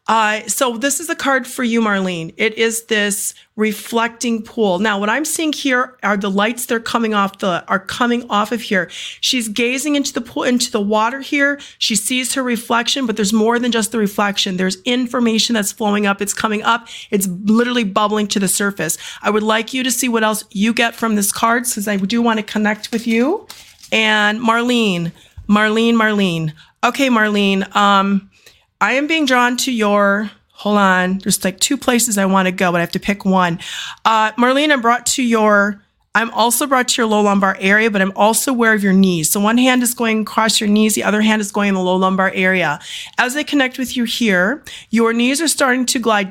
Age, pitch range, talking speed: 40-59, 200-240 Hz, 215 wpm